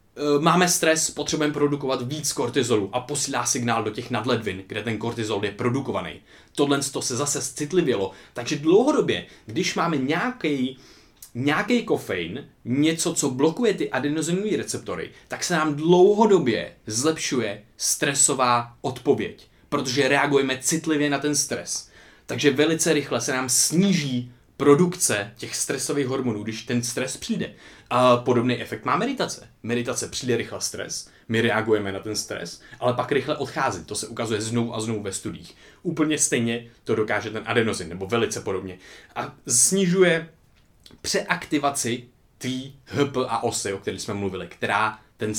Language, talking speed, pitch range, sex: Czech, 145 wpm, 115-150 Hz, male